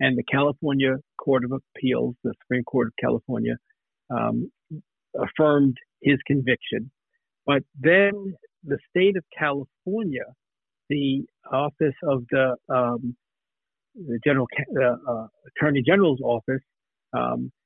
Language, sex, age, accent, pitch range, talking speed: English, male, 60-79, American, 130-160 Hz, 115 wpm